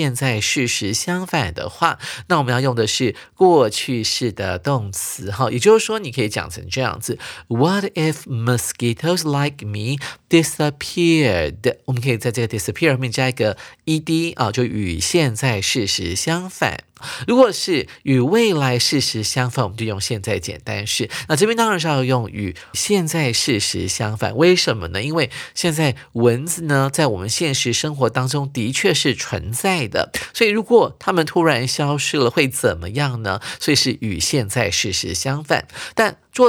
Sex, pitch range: male, 115-155 Hz